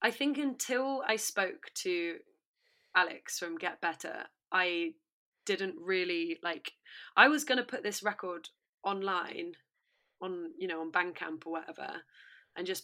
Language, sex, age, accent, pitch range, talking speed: English, female, 20-39, British, 180-260 Hz, 145 wpm